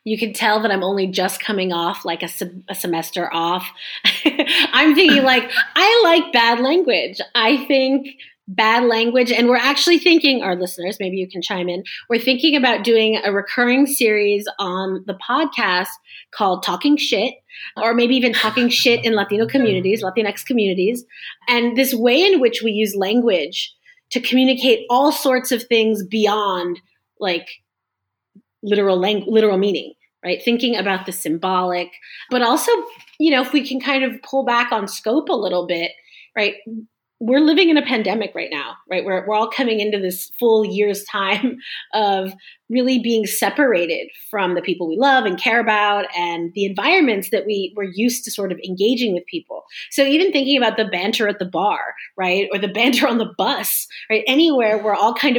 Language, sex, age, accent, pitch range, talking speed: English, female, 30-49, American, 195-265 Hz, 180 wpm